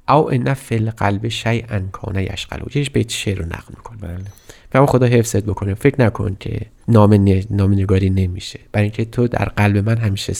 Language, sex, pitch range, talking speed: Persian, male, 100-135 Hz, 190 wpm